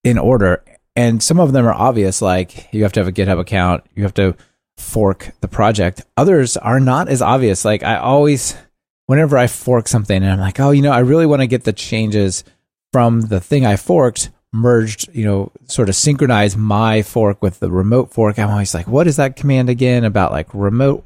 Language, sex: English, male